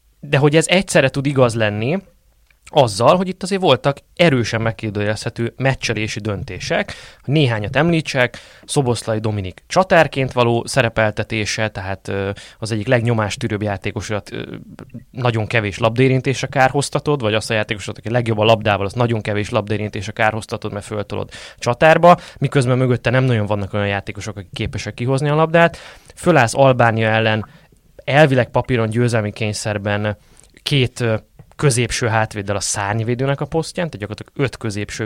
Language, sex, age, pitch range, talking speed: Hungarian, male, 20-39, 110-140 Hz, 130 wpm